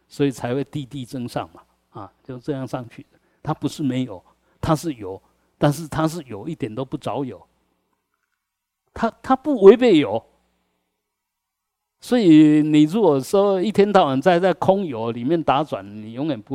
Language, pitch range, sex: Chinese, 115-160 Hz, male